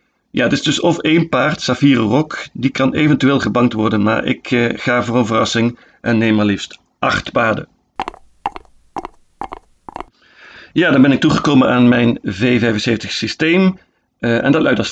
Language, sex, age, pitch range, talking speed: Dutch, male, 50-69, 110-135 Hz, 165 wpm